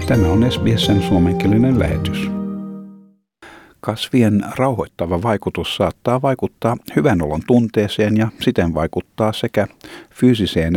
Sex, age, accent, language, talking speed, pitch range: male, 50-69, native, Finnish, 100 wpm, 90-115 Hz